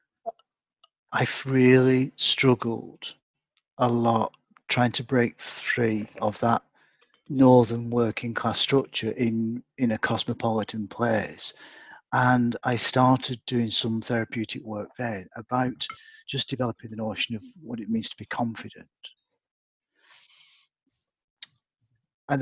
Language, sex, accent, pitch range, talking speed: English, male, British, 110-130 Hz, 110 wpm